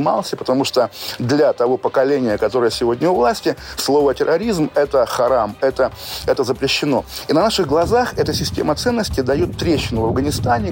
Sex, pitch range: male, 120-165 Hz